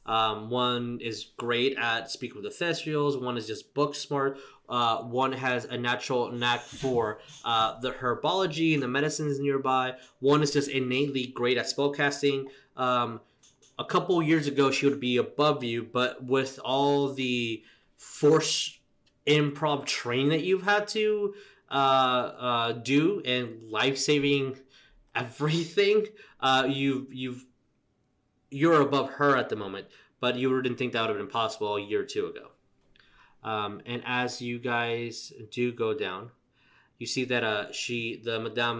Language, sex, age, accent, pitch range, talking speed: English, male, 20-39, American, 120-145 Hz, 155 wpm